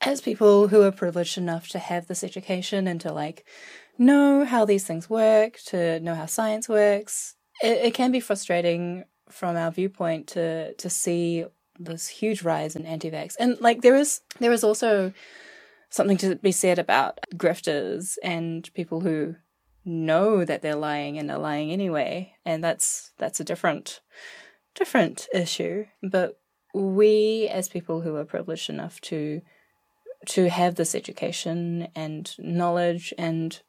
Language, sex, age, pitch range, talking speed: English, female, 20-39, 165-205 Hz, 155 wpm